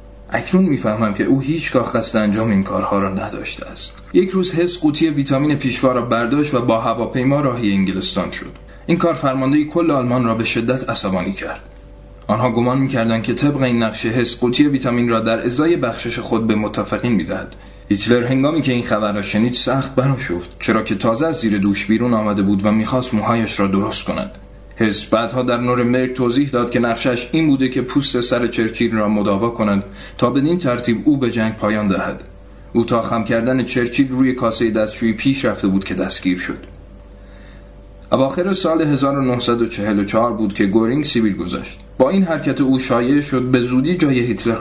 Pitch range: 105-130 Hz